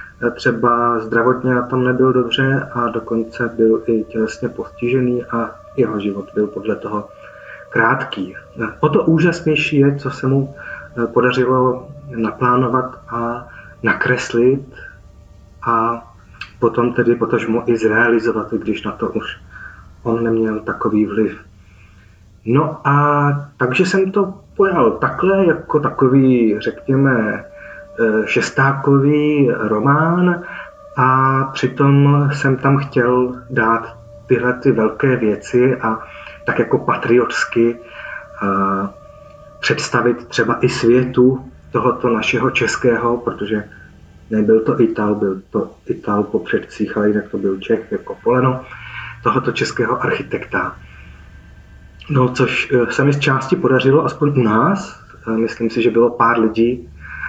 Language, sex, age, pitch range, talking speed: Czech, male, 30-49, 110-135 Hz, 120 wpm